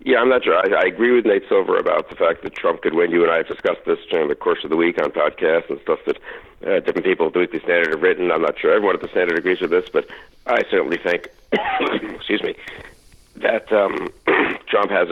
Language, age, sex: English, 60-79, male